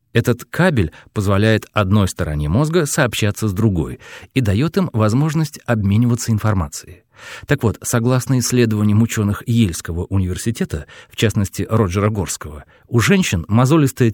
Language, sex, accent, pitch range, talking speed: Russian, male, native, 100-135 Hz, 125 wpm